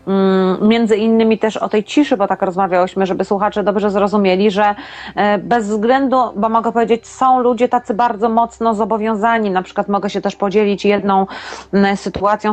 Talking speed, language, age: 160 wpm, Polish, 30-49